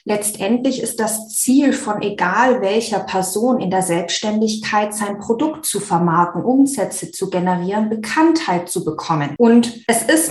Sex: female